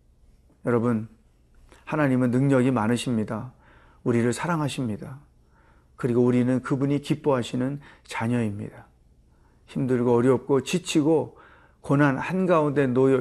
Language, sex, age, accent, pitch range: Korean, male, 40-59, native, 115-170 Hz